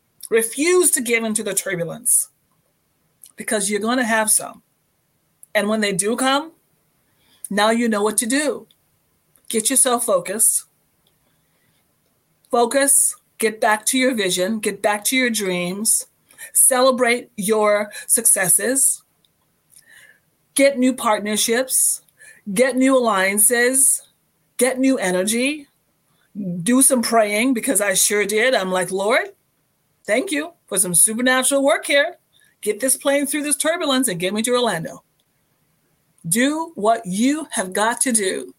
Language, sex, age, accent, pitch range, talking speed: English, female, 30-49, American, 205-265 Hz, 130 wpm